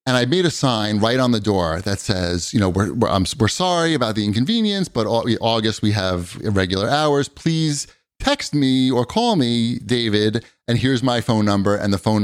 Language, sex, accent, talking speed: English, male, American, 215 wpm